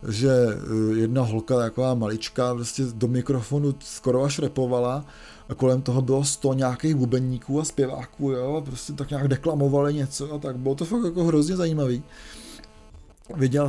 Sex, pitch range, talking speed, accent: male, 120-140 Hz, 150 wpm, native